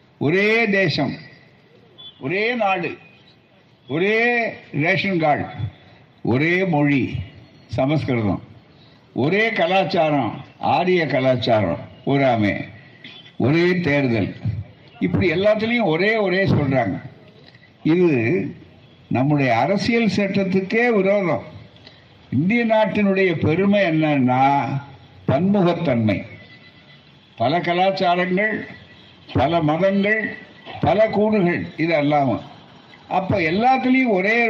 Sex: male